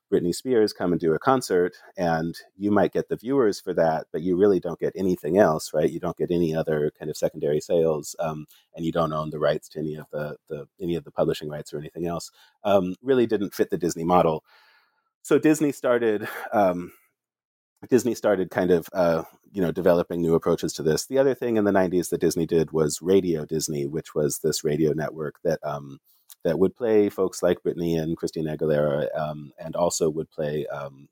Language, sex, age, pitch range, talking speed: English, male, 30-49, 80-100 Hz, 210 wpm